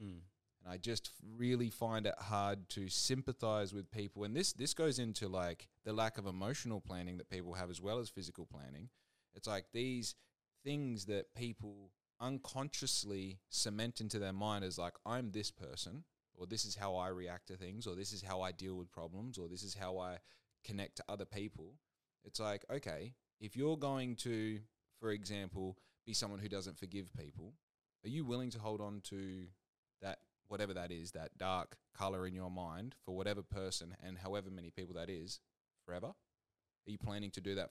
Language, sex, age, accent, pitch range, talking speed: English, male, 20-39, Australian, 95-115 Hz, 190 wpm